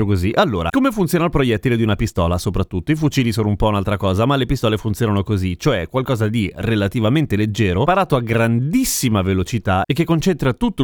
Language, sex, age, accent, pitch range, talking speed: Italian, male, 30-49, native, 105-145 Hz, 195 wpm